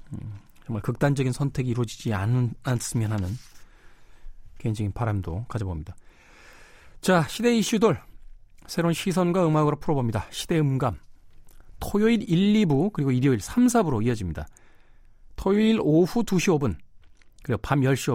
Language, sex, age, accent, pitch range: Korean, male, 40-59, native, 110-160 Hz